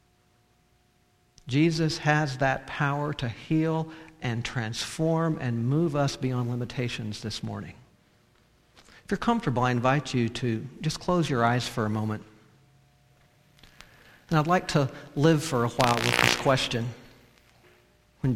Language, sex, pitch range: English, male, 115-140 Hz